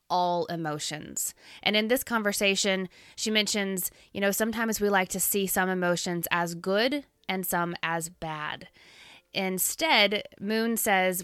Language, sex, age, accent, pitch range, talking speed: English, female, 20-39, American, 170-210 Hz, 140 wpm